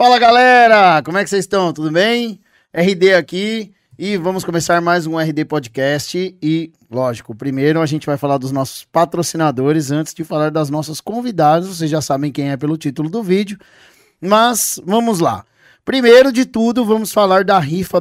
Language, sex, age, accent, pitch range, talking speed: Portuguese, male, 20-39, Brazilian, 145-185 Hz, 175 wpm